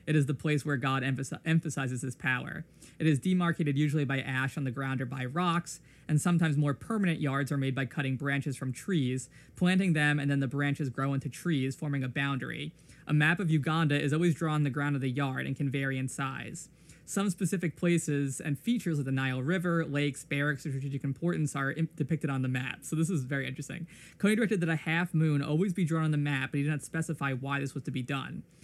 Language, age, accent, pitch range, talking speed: English, 20-39, American, 140-160 Hz, 230 wpm